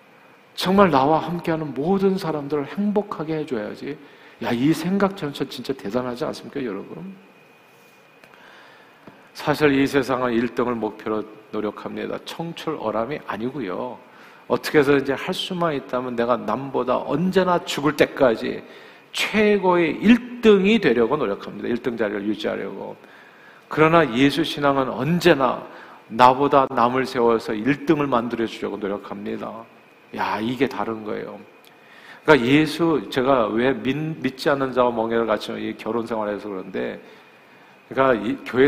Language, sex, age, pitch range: Korean, male, 50-69, 120-170 Hz